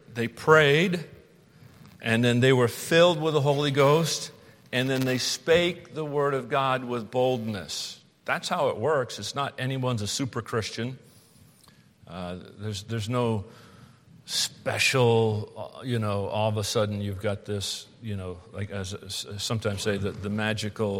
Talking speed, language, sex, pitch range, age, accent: 160 wpm, English, male, 110-145 Hz, 50-69, American